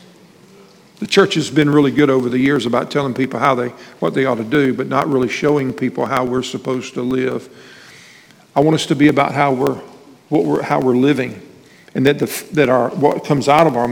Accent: American